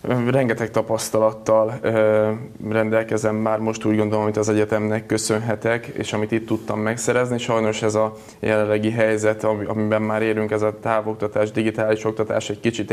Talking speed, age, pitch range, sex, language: 145 wpm, 20-39, 105-115 Hz, male, Hungarian